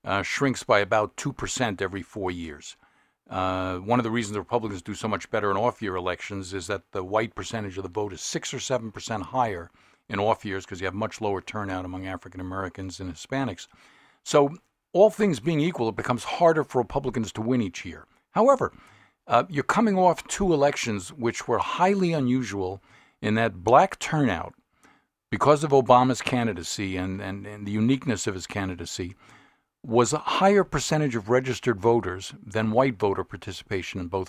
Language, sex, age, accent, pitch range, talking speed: English, male, 50-69, American, 100-125 Hz, 180 wpm